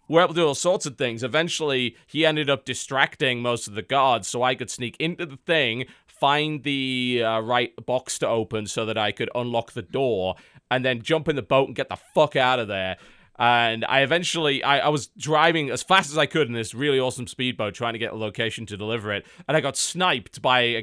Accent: British